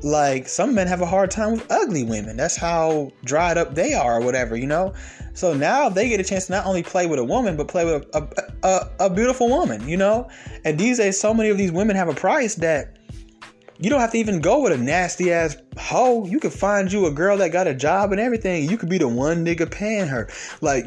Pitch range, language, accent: 150-200 Hz, English, American